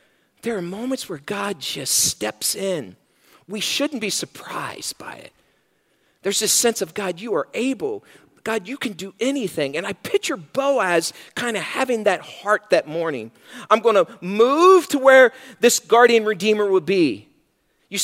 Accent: American